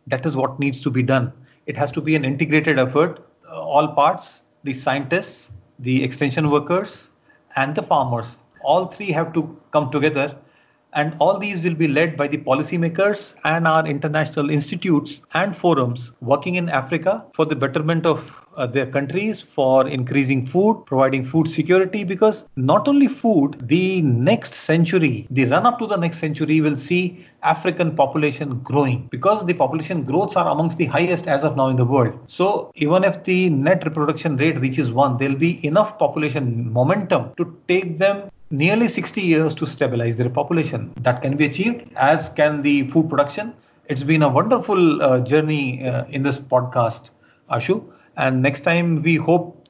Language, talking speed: English, 175 wpm